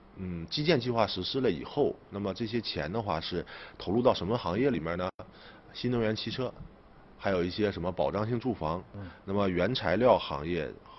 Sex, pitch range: male, 90-115 Hz